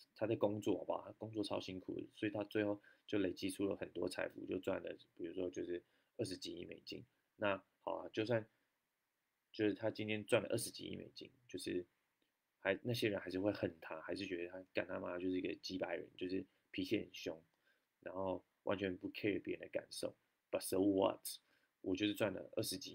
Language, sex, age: Chinese, male, 20-39